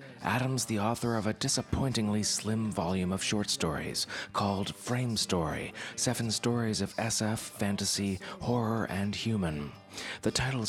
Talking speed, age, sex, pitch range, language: 135 wpm, 30-49, male, 90-115 Hz, English